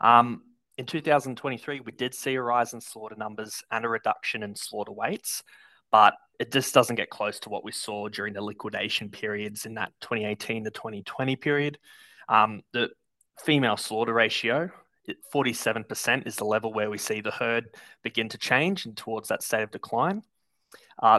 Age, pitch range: 20-39, 110-140 Hz